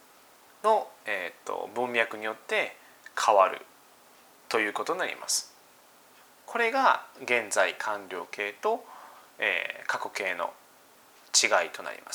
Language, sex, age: Japanese, male, 20-39